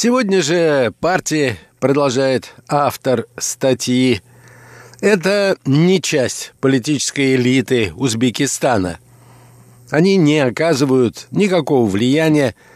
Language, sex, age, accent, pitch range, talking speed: Russian, male, 60-79, native, 125-145 Hz, 80 wpm